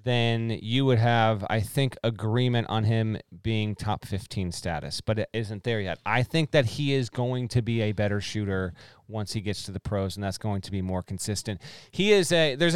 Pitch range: 110-135 Hz